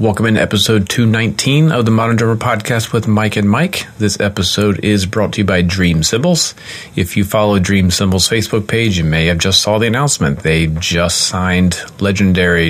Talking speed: 190 wpm